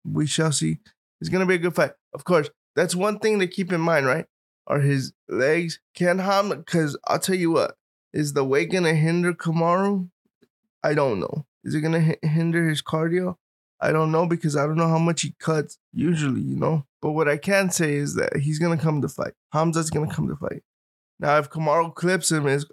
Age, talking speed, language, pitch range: 20-39, 225 wpm, English, 150-170 Hz